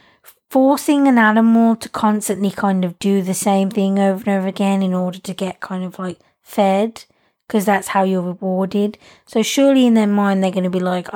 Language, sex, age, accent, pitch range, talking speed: English, female, 20-39, British, 185-220 Hz, 205 wpm